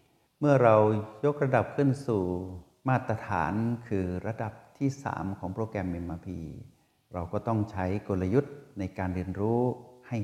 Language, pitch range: Thai, 95-115 Hz